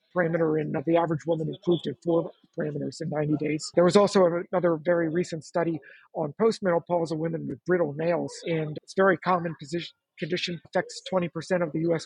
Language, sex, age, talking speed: English, male, 50-69, 190 wpm